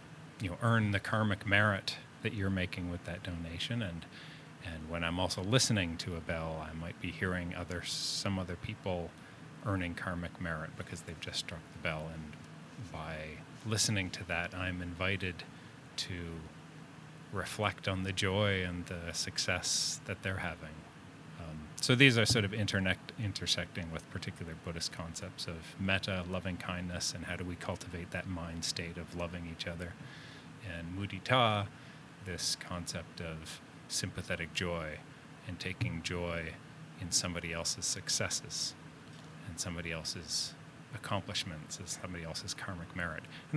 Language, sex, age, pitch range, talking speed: English, male, 30-49, 85-105 Hz, 150 wpm